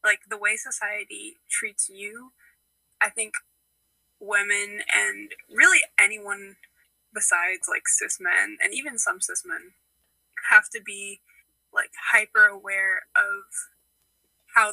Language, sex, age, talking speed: English, female, 10-29, 120 wpm